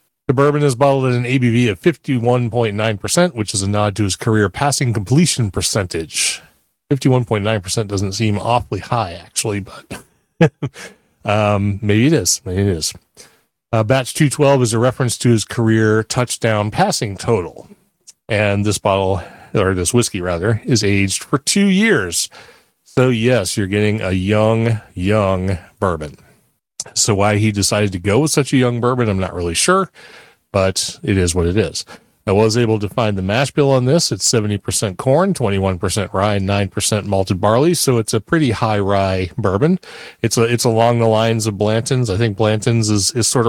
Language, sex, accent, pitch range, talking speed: English, male, American, 100-130 Hz, 175 wpm